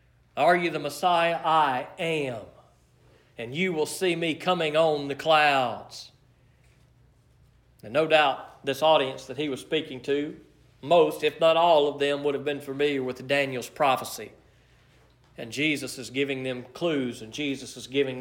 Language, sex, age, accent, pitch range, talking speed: English, male, 40-59, American, 135-185 Hz, 160 wpm